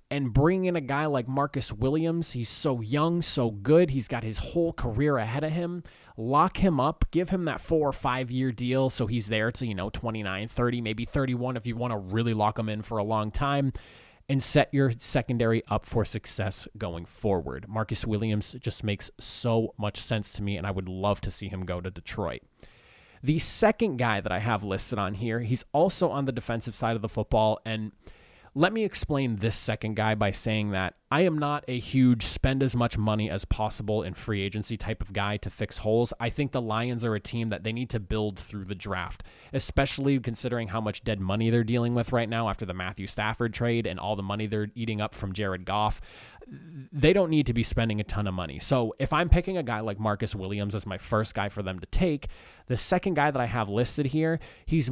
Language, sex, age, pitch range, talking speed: English, male, 30-49, 105-135 Hz, 225 wpm